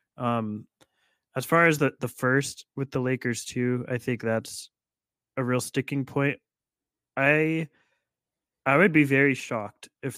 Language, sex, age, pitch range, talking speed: English, male, 20-39, 115-130 Hz, 145 wpm